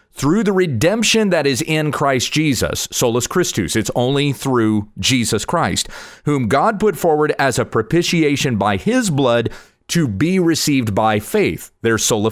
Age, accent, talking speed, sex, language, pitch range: 40-59, American, 155 wpm, male, English, 110-170 Hz